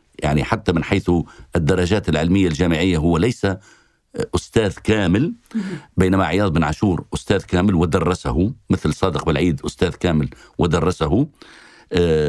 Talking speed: 115 wpm